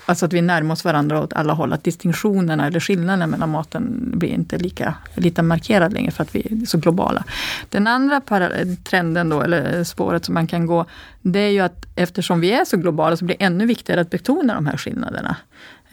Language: Swedish